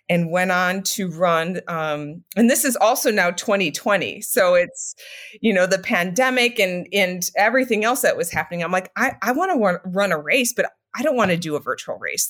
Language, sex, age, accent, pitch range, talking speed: English, female, 30-49, American, 170-205 Hz, 210 wpm